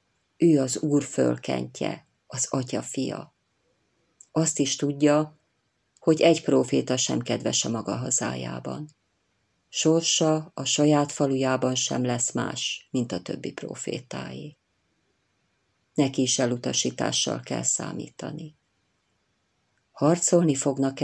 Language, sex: Hungarian, female